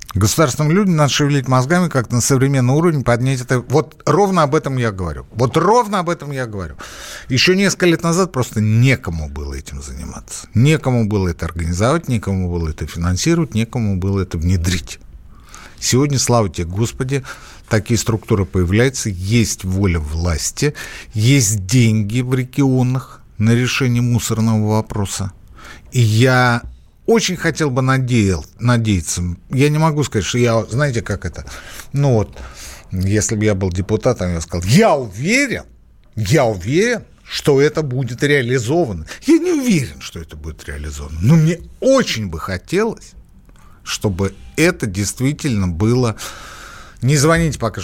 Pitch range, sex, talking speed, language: 95-135 Hz, male, 145 wpm, Russian